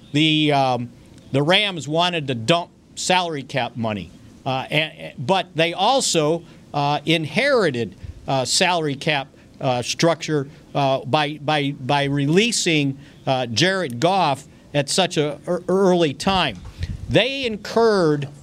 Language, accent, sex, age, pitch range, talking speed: English, American, male, 50-69, 145-190 Hz, 125 wpm